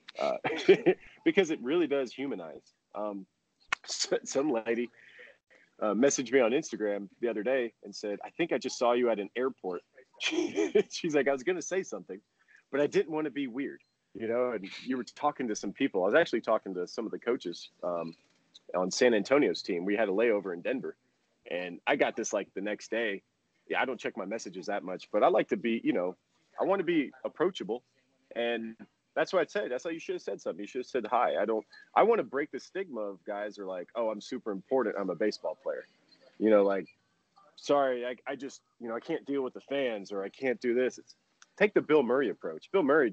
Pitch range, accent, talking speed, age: 110-180 Hz, American, 230 wpm, 30-49